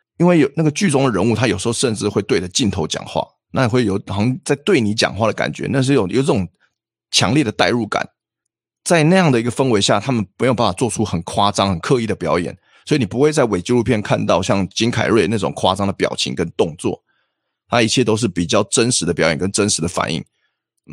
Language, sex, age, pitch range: Chinese, male, 20-39, 95-120 Hz